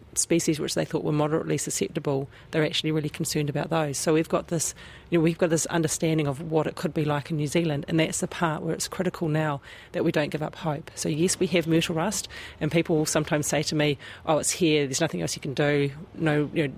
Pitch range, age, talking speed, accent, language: 150-165 Hz, 40-59, 255 wpm, Australian, English